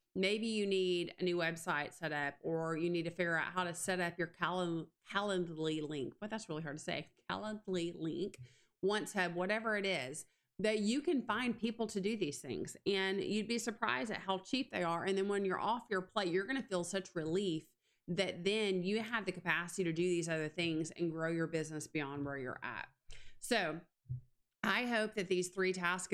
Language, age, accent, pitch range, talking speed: English, 30-49, American, 160-190 Hz, 210 wpm